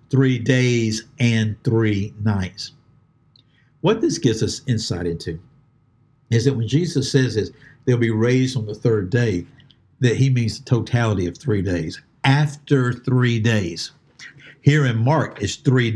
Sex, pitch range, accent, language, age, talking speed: male, 110-135 Hz, American, English, 60-79, 145 wpm